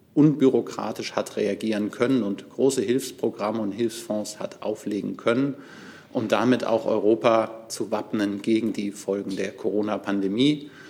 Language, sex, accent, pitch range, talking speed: German, male, German, 100-115 Hz, 125 wpm